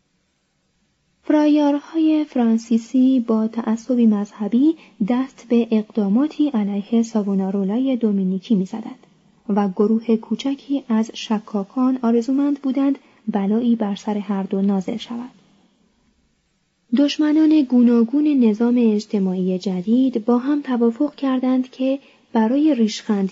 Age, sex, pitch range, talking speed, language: 30-49, female, 200-255 Hz, 100 wpm, Persian